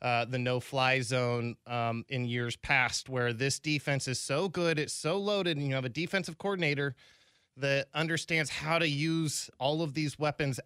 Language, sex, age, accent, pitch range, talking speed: English, male, 20-39, American, 125-150 Hz, 180 wpm